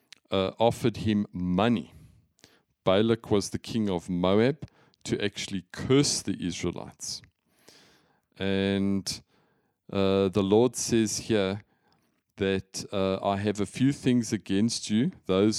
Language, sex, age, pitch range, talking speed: English, male, 40-59, 90-105 Hz, 120 wpm